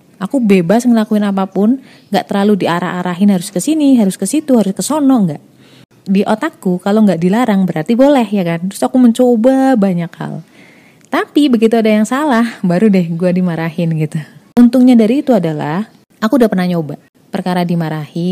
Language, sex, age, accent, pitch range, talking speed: Indonesian, female, 30-49, native, 165-220 Hz, 165 wpm